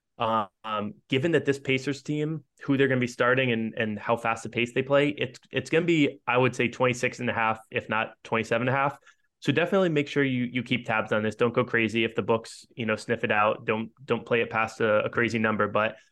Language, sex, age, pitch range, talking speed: English, male, 20-39, 110-125 Hz, 255 wpm